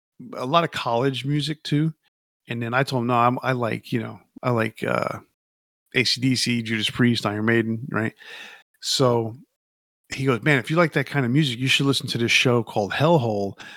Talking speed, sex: 195 wpm, male